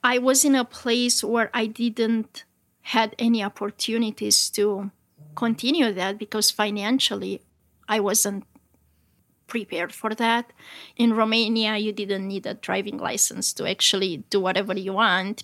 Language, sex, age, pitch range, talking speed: English, female, 30-49, 210-245 Hz, 135 wpm